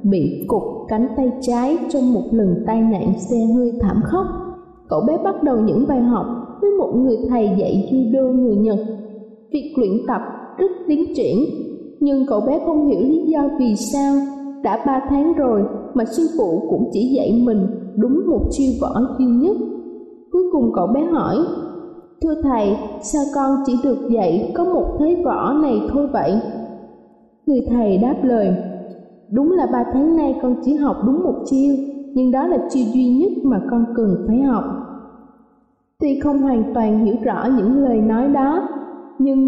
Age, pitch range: 20-39, 230-290 Hz